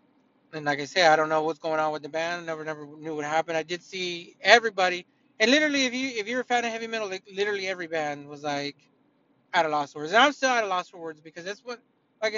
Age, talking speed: 30-49, 270 wpm